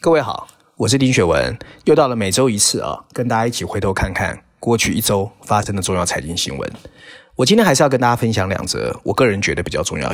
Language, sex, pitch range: Chinese, male, 100-130 Hz